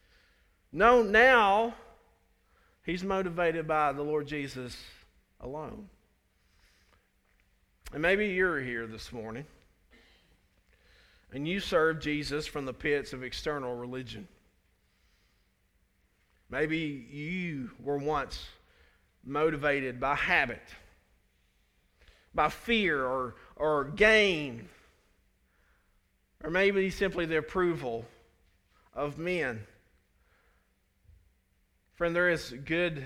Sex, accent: male, American